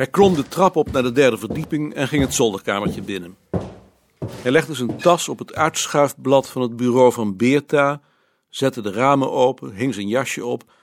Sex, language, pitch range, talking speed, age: male, Dutch, 100-145 Hz, 190 wpm, 60-79